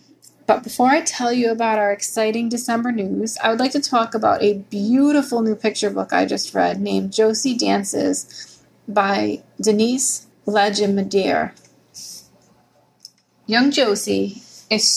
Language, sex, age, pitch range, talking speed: English, female, 30-49, 205-235 Hz, 135 wpm